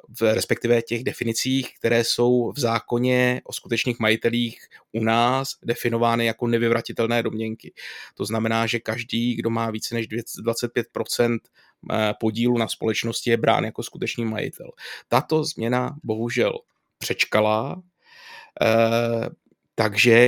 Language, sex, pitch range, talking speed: Czech, male, 115-125 Hz, 115 wpm